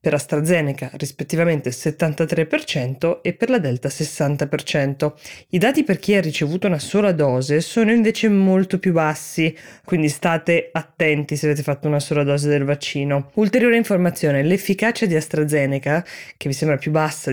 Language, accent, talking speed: Italian, native, 150 wpm